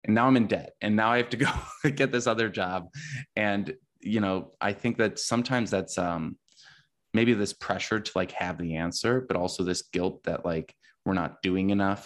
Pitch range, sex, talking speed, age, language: 90-110 Hz, male, 210 wpm, 20-39, English